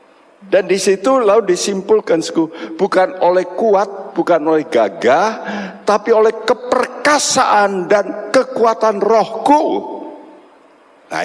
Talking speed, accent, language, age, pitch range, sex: 90 wpm, native, Indonesian, 60-79, 160-260 Hz, male